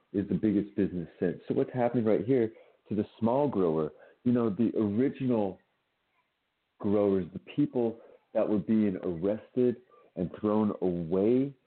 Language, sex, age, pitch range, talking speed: English, male, 40-59, 95-125 Hz, 145 wpm